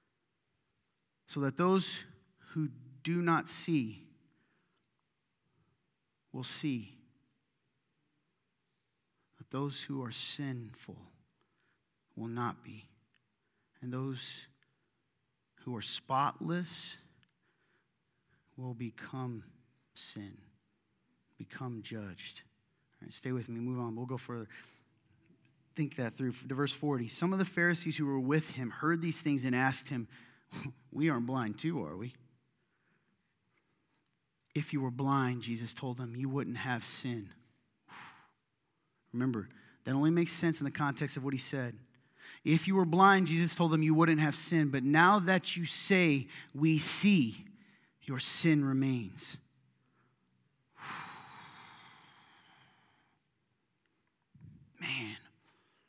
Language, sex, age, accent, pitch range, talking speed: English, male, 30-49, American, 125-160 Hz, 115 wpm